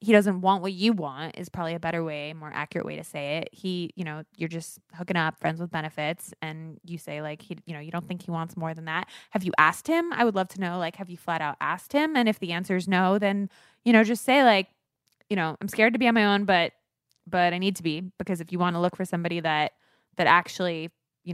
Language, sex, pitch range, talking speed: English, female, 165-205 Hz, 275 wpm